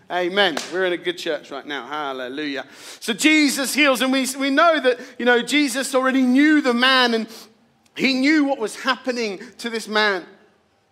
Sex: male